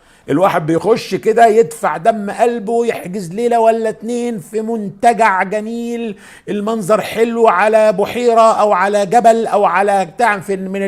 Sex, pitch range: male, 145-215 Hz